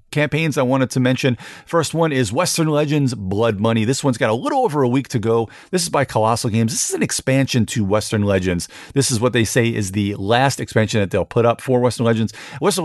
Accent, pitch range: American, 100-125 Hz